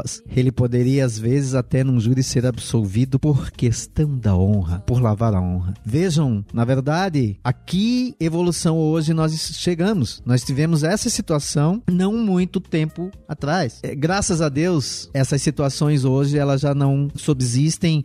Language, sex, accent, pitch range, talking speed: Portuguese, male, Brazilian, 120-160 Hz, 145 wpm